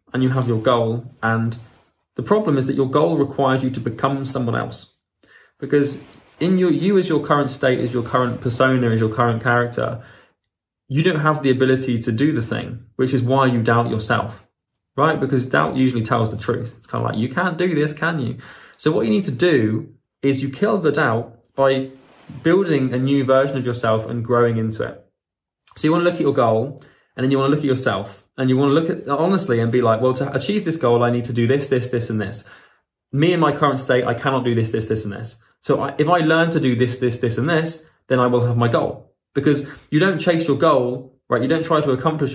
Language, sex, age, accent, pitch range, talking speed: English, male, 20-39, British, 120-140 Hz, 240 wpm